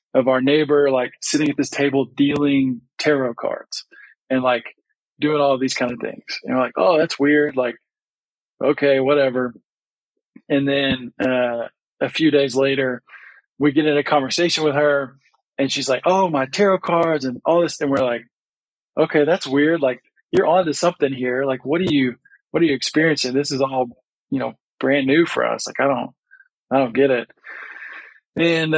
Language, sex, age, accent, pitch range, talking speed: English, male, 20-39, American, 130-155 Hz, 185 wpm